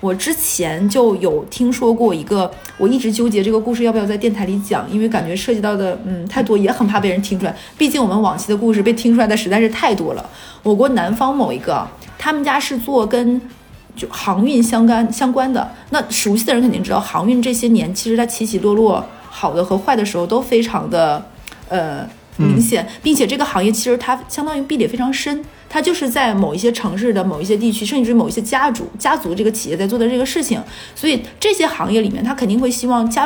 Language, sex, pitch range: Chinese, female, 210-255 Hz